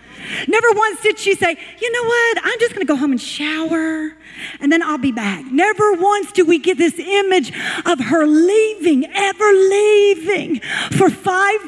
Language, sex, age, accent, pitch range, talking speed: English, female, 40-59, American, 295-400 Hz, 180 wpm